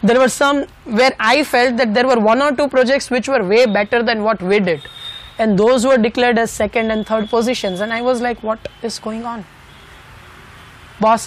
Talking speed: 210 wpm